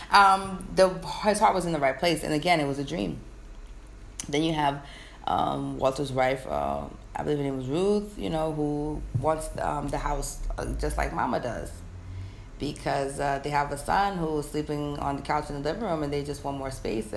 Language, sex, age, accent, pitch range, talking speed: English, female, 20-39, American, 130-160 Hz, 215 wpm